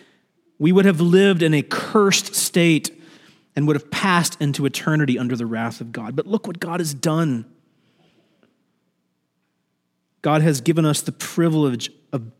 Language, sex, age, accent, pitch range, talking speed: English, male, 30-49, American, 135-175 Hz, 155 wpm